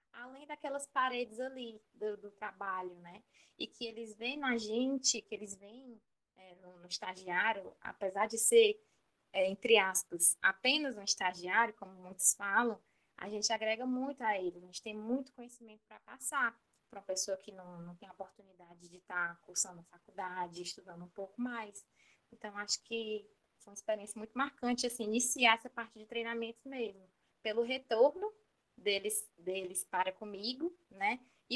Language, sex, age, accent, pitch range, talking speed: Portuguese, female, 10-29, Brazilian, 190-250 Hz, 165 wpm